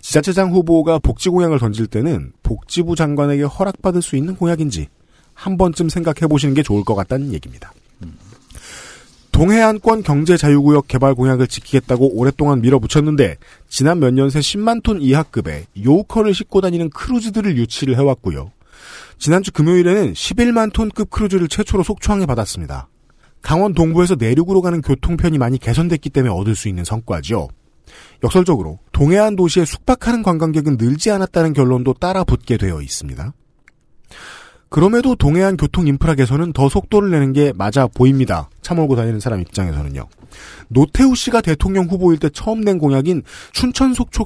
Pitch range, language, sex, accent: 125-185 Hz, Korean, male, native